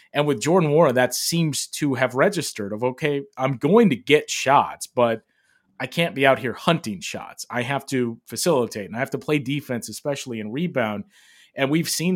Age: 30-49